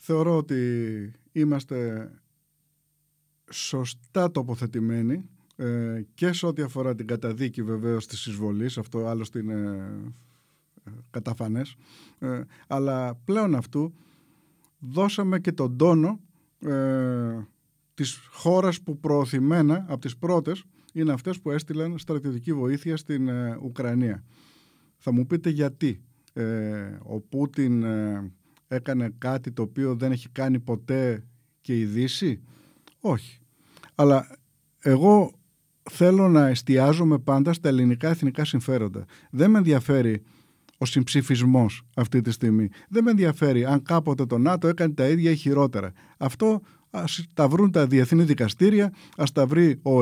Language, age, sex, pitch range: Greek, 50-69, male, 120-160 Hz